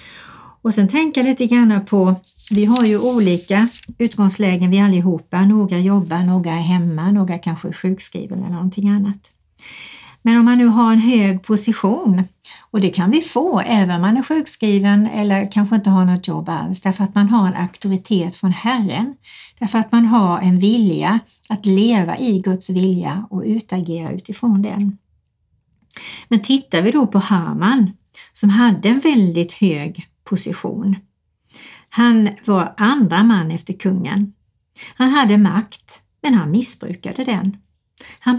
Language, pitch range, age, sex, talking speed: Swedish, 185-225 Hz, 60-79, female, 155 wpm